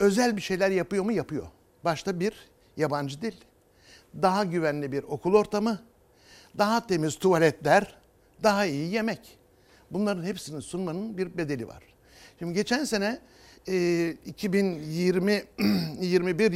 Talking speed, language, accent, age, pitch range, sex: 110 wpm, Turkish, native, 60-79, 150-200 Hz, male